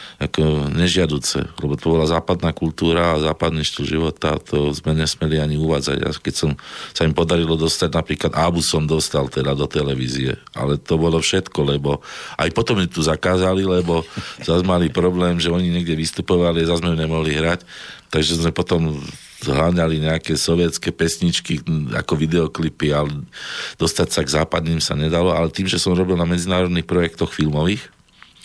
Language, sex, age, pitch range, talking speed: Slovak, male, 40-59, 75-85 Hz, 160 wpm